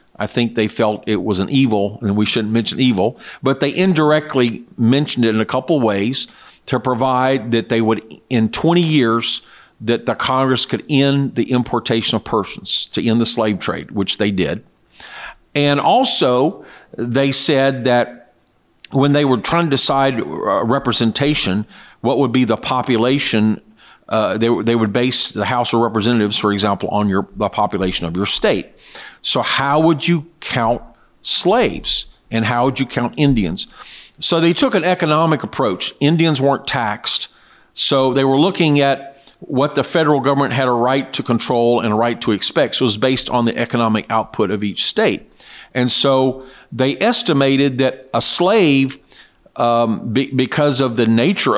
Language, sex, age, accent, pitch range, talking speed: English, male, 50-69, American, 115-140 Hz, 170 wpm